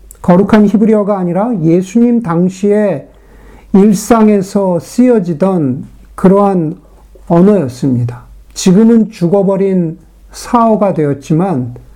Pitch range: 165-215 Hz